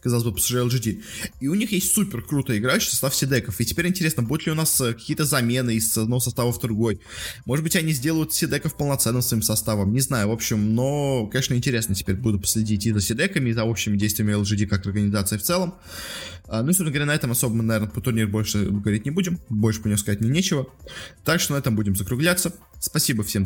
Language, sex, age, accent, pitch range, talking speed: Russian, male, 20-39, native, 105-135 Hz, 215 wpm